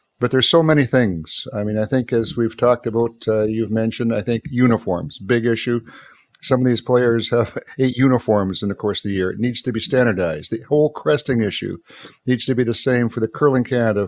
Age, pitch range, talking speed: 50-69, 105-130 Hz, 220 wpm